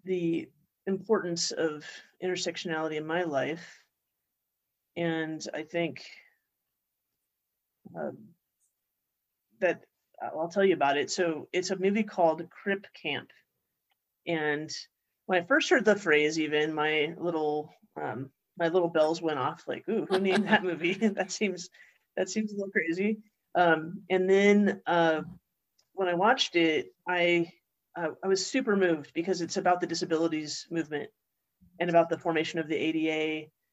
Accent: American